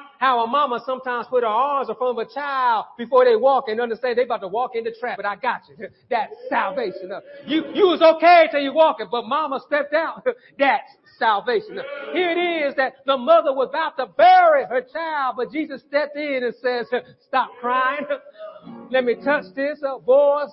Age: 40-59